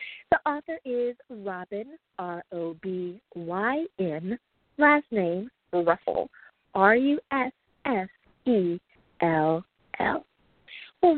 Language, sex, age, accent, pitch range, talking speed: English, female, 40-59, American, 190-250 Hz, 115 wpm